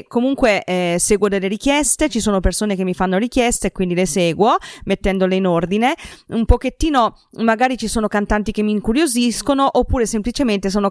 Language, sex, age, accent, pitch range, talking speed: Italian, female, 20-39, native, 190-245 Hz, 170 wpm